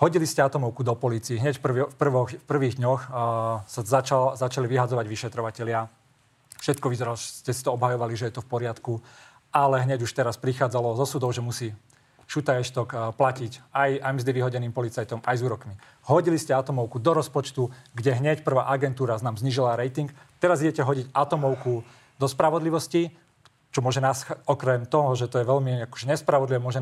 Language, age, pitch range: Slovak, 40-59, 125-145 Hz